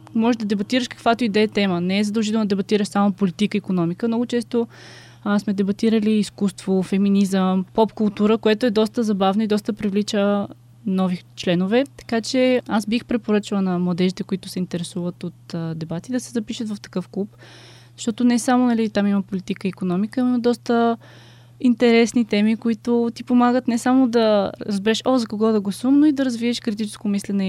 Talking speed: 180 wpm